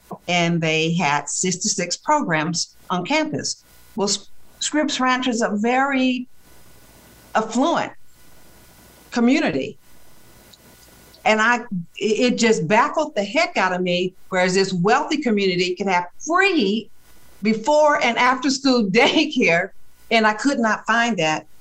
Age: 50-69